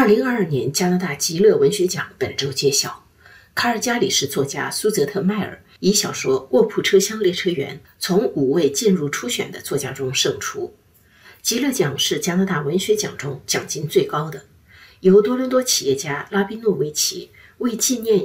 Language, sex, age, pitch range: Chinese, female, 50-69, 180-270 Hz